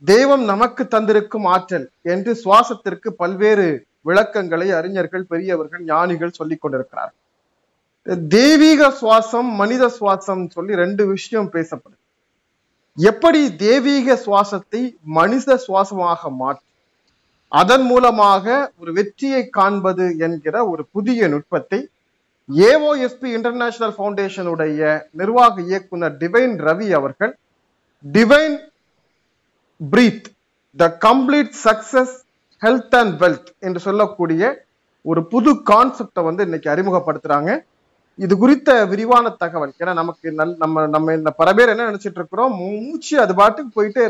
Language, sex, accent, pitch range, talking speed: Tamil, male, native, 175-240 Hz, 90 wpm